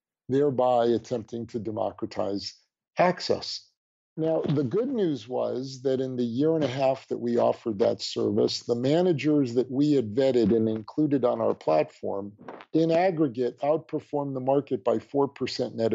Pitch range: 125-150 Hz